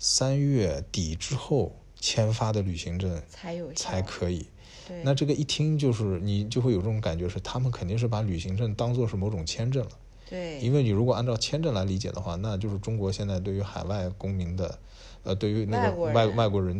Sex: male